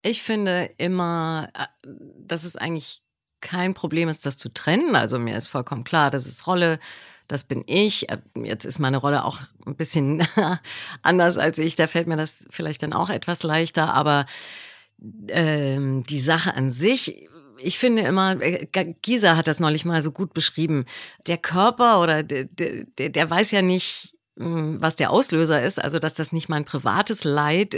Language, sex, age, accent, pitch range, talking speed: German, female, 30-49, German, 155-190 Hz, 170 wpm